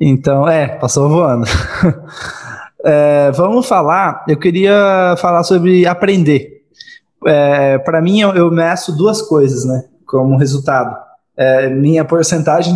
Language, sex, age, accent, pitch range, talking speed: Portuguese, male, 20-39, Brazilian, 145-185 Hz, 120 wpm